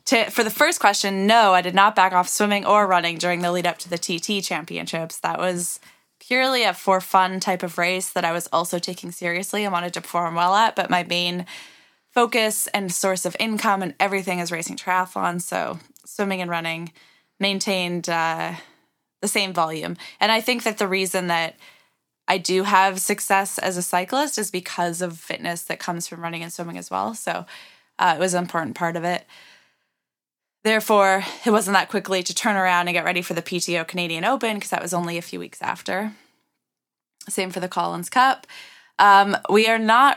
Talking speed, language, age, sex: 195 wpm, English, 20-39, female